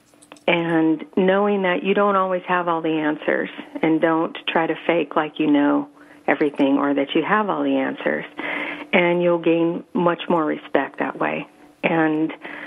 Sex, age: female, 50-69